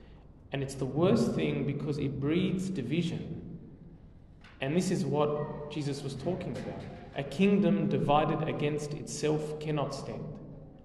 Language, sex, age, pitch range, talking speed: English, male, 30-49, 135-175 Hz, 135 wpm